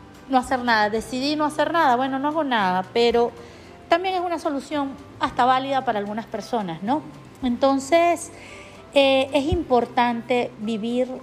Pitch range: 200-255 Hz